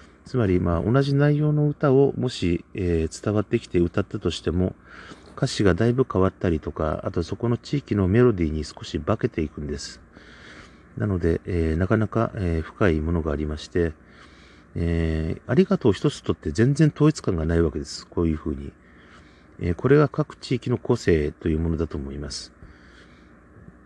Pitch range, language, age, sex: 80-120 Hz, Japanese, 40-59, male